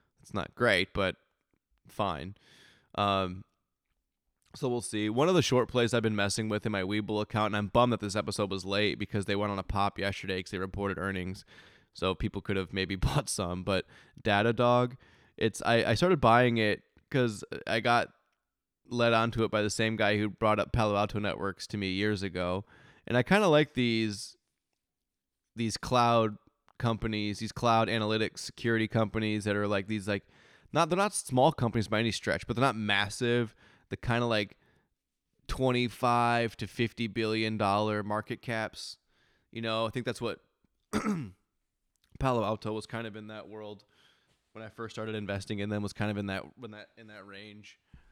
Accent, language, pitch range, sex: American, English, 95-115 Hz, male